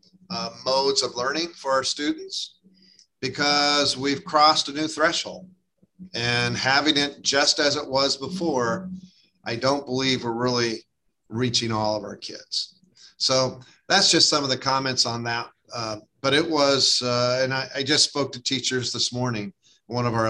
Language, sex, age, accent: English, male, 50-69, American